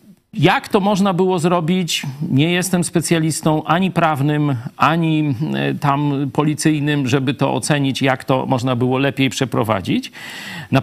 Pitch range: 125-180 Hz